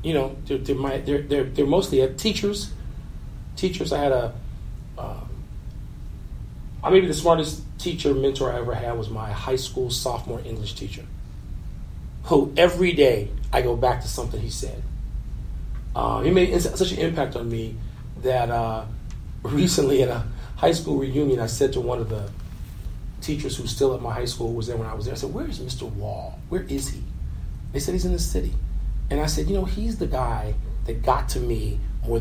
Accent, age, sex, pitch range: American, 40-59, male, 115-140 Hz